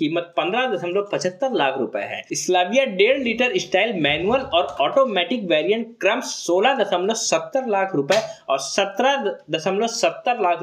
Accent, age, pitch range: native, 20-39, 170-245 Hz